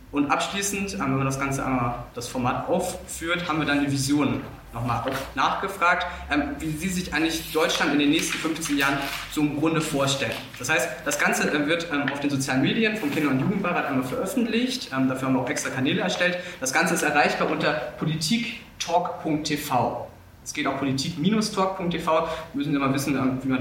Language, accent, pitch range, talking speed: German, German, 135-160 Hz, 195 wpm